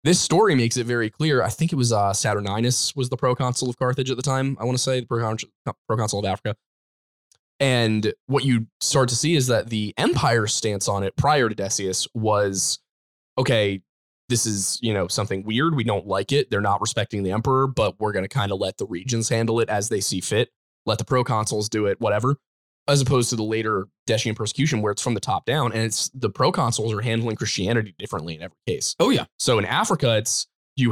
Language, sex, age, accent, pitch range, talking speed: English, male, 10-29, American, 110-135 Hz, 220 wpm